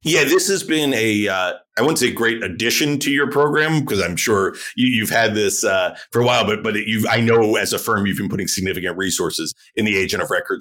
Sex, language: male, English